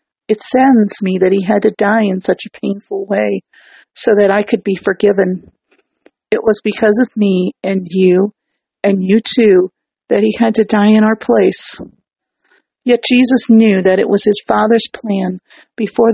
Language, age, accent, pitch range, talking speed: English, 50-69, American, 195-230 Hz, 175 wpm